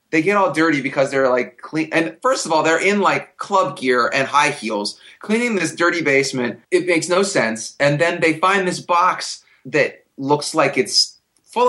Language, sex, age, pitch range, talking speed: English, male, 30-49, 135-190 Hz, 200 wpm